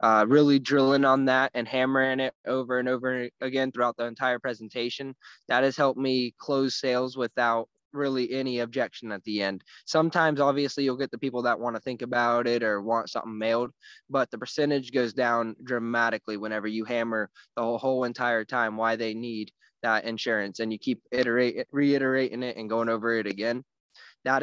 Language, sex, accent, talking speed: English, male, American, 185 wpm